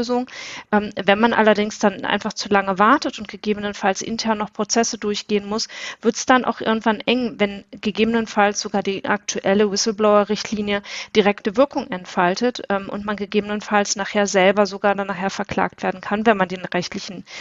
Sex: female